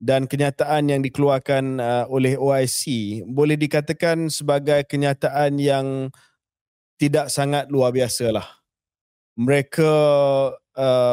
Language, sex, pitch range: Malay, male, 125-140 Hz